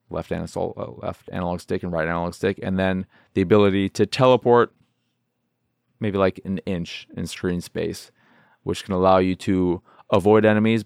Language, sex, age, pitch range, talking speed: English, male, 30-49, 90-110 Hz, 160 wpm